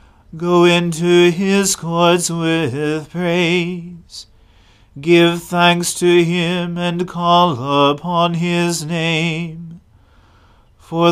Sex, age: male, 40-59